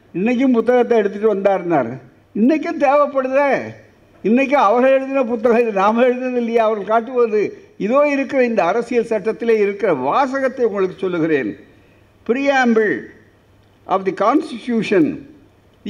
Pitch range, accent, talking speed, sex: 195-275 Hz, native, 110 wpm, male